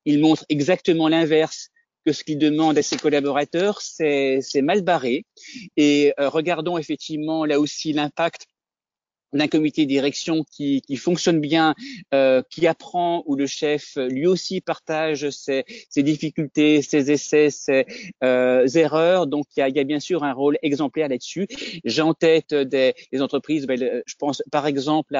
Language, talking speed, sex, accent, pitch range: French, 165 wpm, male, French, 140-170 Hz